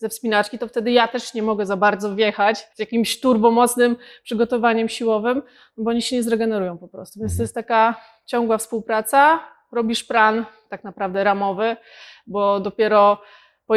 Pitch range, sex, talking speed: 210-245 Hz, female, 160 wpm